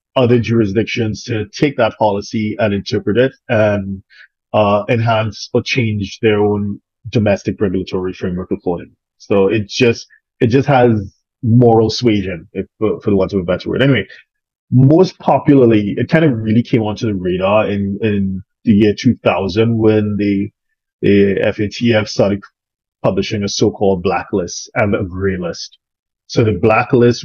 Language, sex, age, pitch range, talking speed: English, male, 30-49, 100-120 Hz, 150 wpm